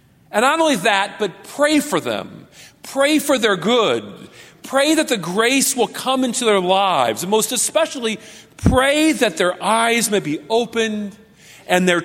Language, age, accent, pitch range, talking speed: English, 40-59, American, 190-255 Hz, 165 wpm